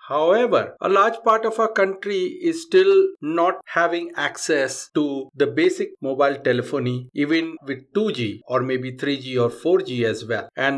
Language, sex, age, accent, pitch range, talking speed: English, male, 50-69, Indian, 125-195 Hz, 155 wpm